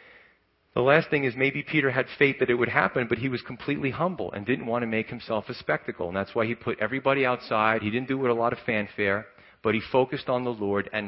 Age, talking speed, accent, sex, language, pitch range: 40-59, 255 wpm, American, male, English, 105-130 Hz